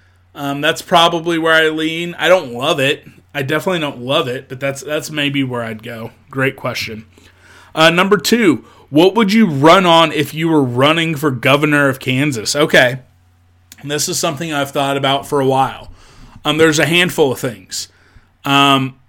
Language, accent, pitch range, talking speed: English, American, 130-160 Hz, 180 wpm